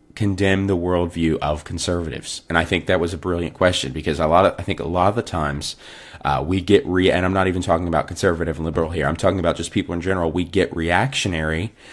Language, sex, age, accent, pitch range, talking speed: English, male, 30-49, American, 80-95 Hz, 240 wpm